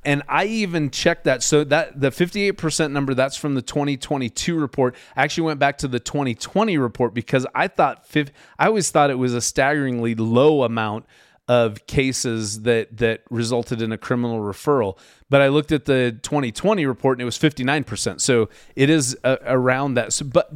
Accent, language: American, English